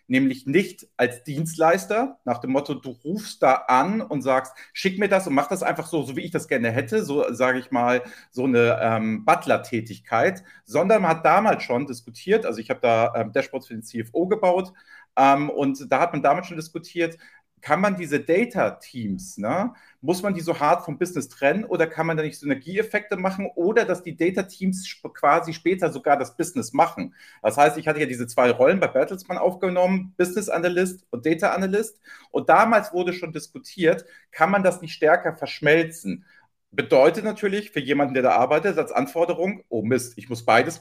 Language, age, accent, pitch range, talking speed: German, 40-59, German, 135-185 Hz, 195 wpm